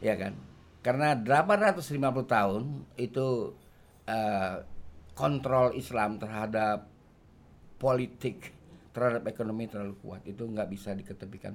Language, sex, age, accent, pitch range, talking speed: Indonesian, male, 50-69, native, 105-135 Hz, 100 wpm